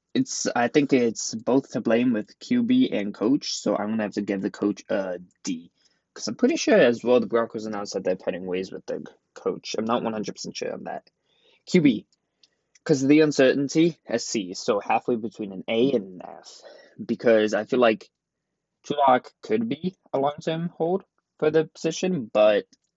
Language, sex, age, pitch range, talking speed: English, male, 20-39, 110-155 Hz, 190 wpm